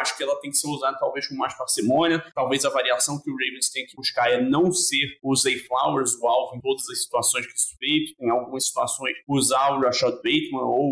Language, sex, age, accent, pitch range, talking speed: Portuguese, male, 20-39, Brazilian, 125-155 Hz, 235 wpm